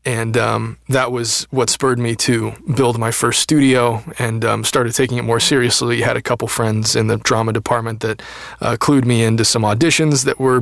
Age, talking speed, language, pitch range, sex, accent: 20-39, 205 wpm, English, 115-130 Hz, male, American